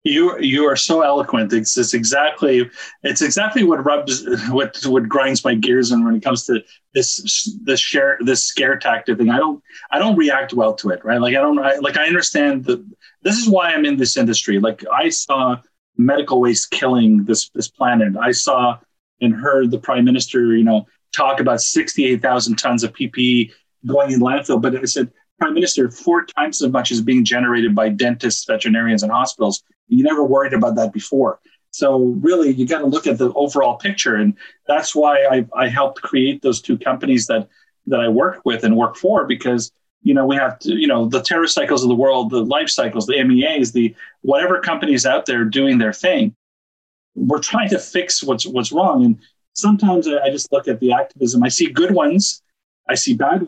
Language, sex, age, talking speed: English, male, 30-49, 205 wpm